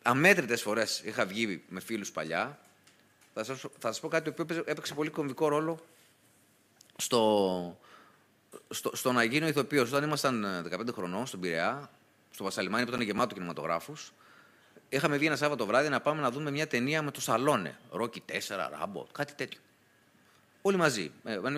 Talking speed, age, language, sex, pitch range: 155 wpm, 30-49, Greek, male, 120-185 Hz